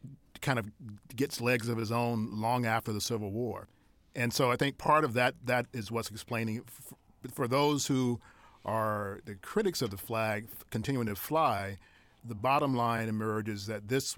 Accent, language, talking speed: American, English, 180 wpm